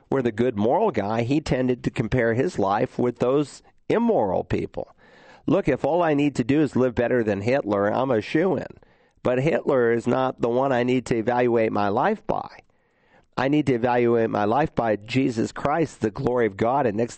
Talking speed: 205 wpm